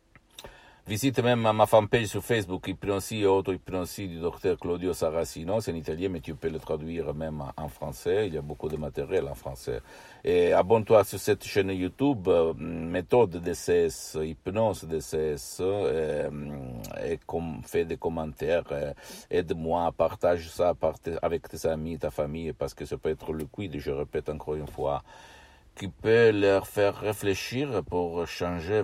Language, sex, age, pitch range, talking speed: Italian, male, 60-79, 80-100 Hz, 160 wpm